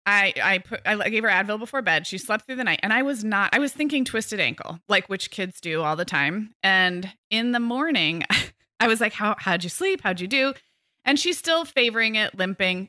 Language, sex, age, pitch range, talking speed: English, female, 20-39, 185-250 Hz, 235 wpm